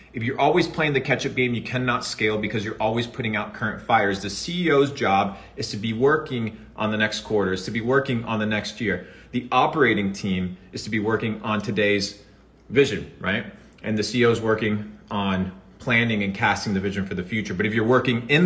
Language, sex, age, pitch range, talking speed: English, male, 30-49, 105-125 Hz, 210 wpm